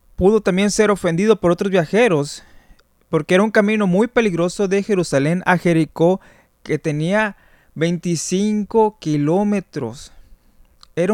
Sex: male